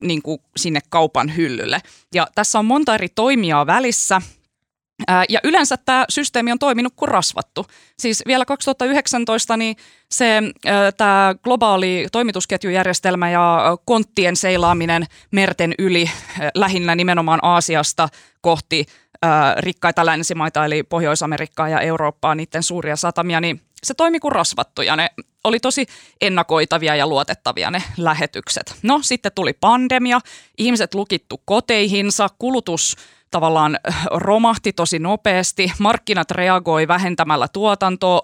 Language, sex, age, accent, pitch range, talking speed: Finnish, female, 20-39, native, 165-220 Hz, 115 wpm